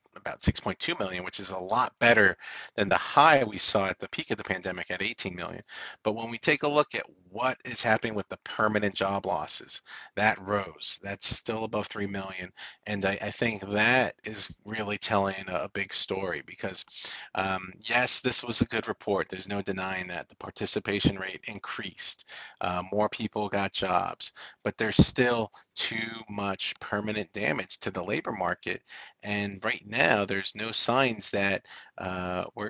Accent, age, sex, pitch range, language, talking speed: American, 40-59, male, 95-115 Hz, English, 175 wpm